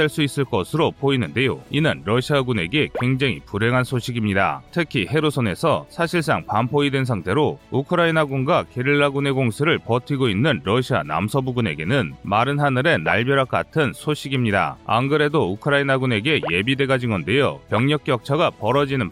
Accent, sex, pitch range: native, male, 120-155 Hz